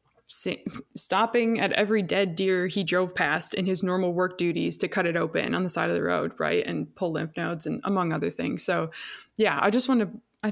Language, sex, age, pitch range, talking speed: English, female, 20-39, 175-200 Hz, 220 wpm